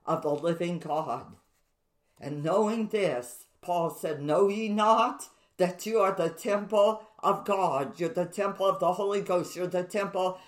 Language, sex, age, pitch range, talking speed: English, female, 50-69, 175-220 Hz, 165 wpm